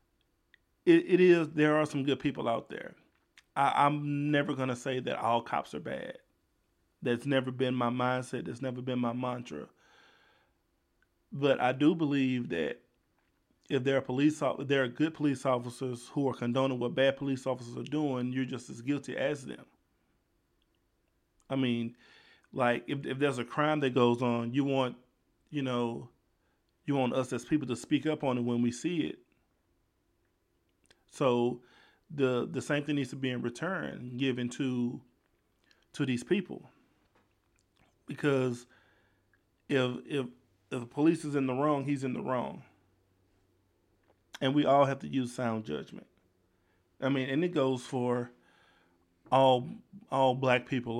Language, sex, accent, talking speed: English, male, American, 160 wpm